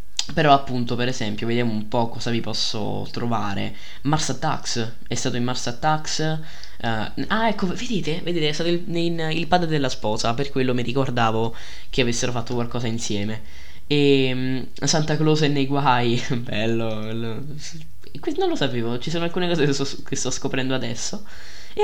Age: 10-29